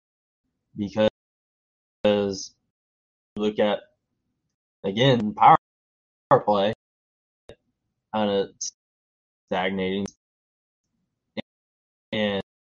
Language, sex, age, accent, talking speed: English, male, 20-39, American, 60 wpm